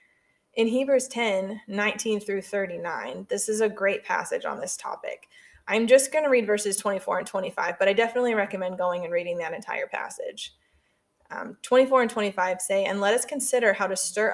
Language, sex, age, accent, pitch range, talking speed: English, female, 20-39, American, 195-255 Hz, 190 wpm